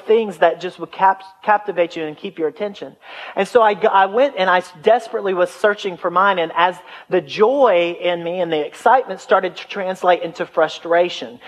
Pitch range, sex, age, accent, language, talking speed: 155-195 Hz, male, 40-59, American, English, 190 wpm